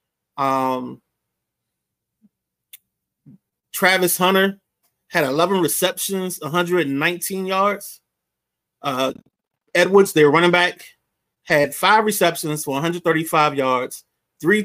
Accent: American